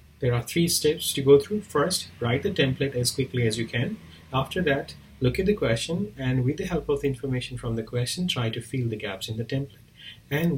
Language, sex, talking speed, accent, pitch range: English, male, 235 wpm, Indian, 115-150 Hz